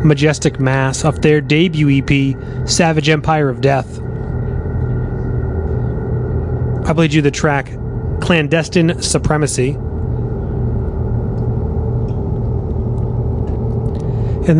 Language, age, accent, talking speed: English, 30-49, American, 75 wpm